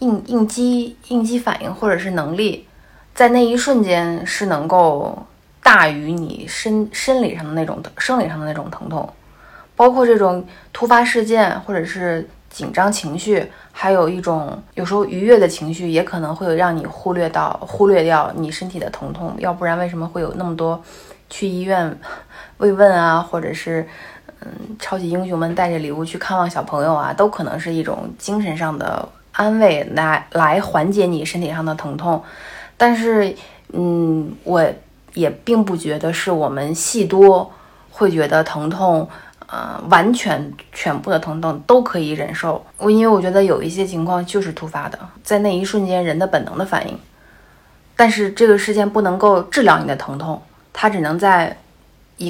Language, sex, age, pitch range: Chinese, female, 20-39, 165-210 Hz